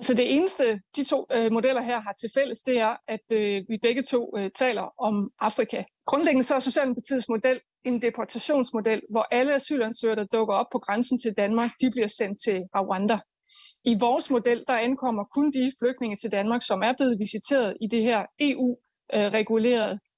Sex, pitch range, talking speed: female, 220-255 Hz, 185 wpm